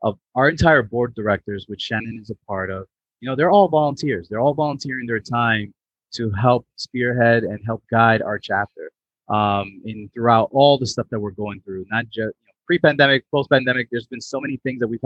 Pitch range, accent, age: 105-130 Hz, American, 30-49